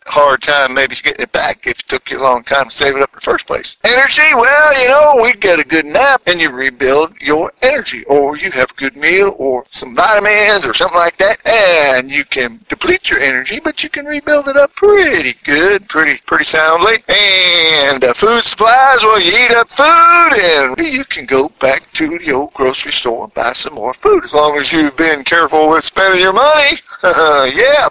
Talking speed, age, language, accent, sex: 215 wpm, 50-69, English, American, male